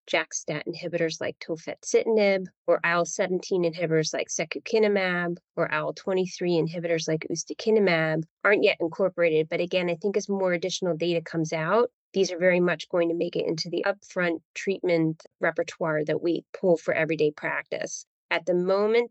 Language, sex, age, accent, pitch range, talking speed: English, female, 30-49, American, 170-195 Hz, 155 wpm